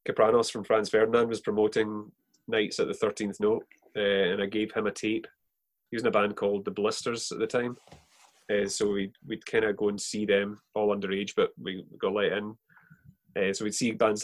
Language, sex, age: English, male, 20-39